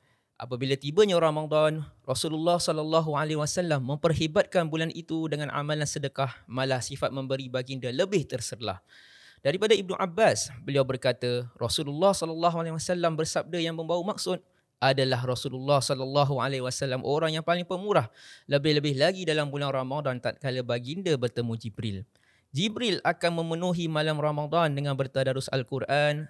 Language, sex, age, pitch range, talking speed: English, male, 20-39, 130-160 Hz, 135 wpm